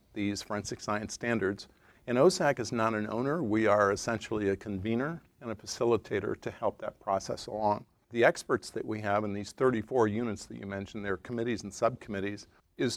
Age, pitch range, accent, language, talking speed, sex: 50-69, 105-125 Hz, American, English, 185 wpm, male